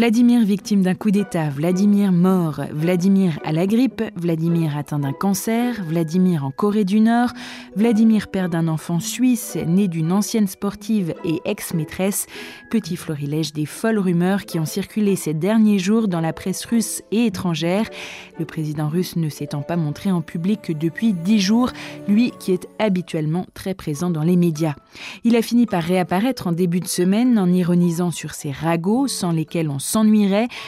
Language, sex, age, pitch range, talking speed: French, female, 20-39, 165-210 Hz, 170 wpm